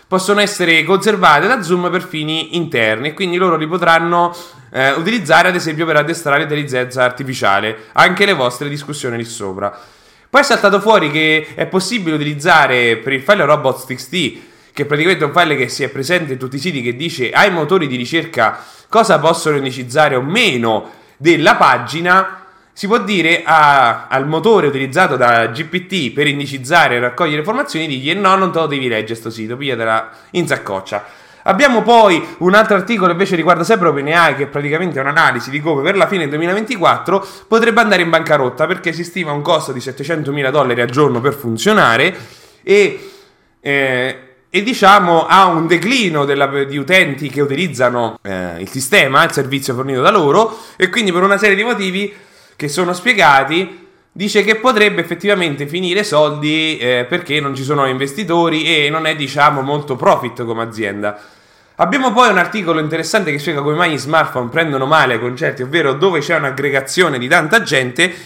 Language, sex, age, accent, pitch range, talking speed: English, male, 20-39, Italian, 135-185 Hz, 175 wpm